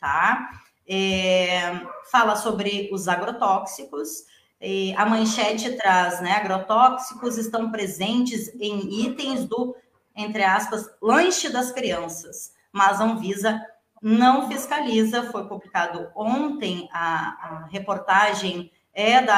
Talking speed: 110 wpm